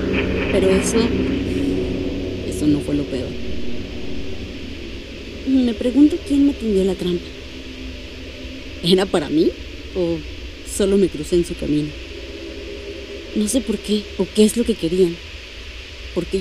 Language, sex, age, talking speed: Spanish, female, 30-49, 130 wpm